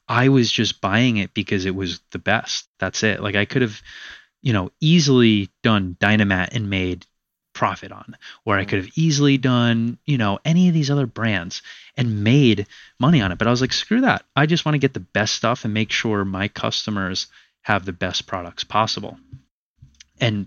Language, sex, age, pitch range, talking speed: English, male, 20-39, 100-125 Hz, 200 wpm